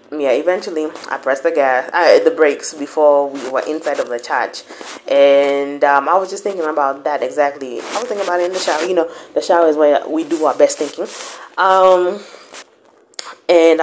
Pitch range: 150-190 Hz